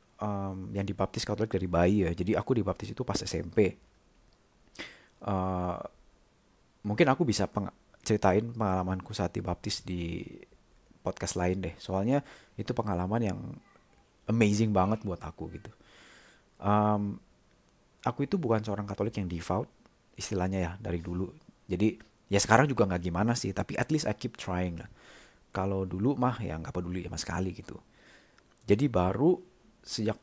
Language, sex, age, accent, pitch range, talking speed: Indonesian, male, 30-49, native, 90-110 Hz, 145 wpm